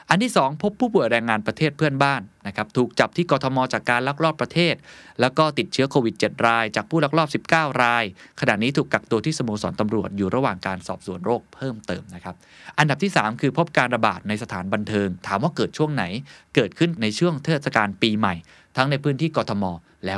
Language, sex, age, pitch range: Thai, male, 20-39, 105-150 Hz